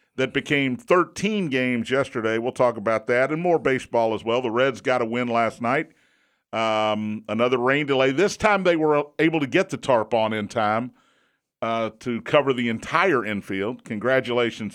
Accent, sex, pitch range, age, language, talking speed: American, male, 120-160 Hz, 50-69, English, 180 wpm